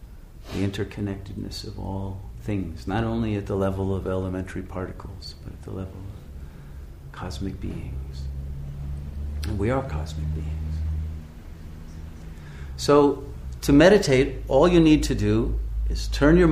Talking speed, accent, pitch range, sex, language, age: 130 wpm, American, 90-125 Hz, male, English, 50-69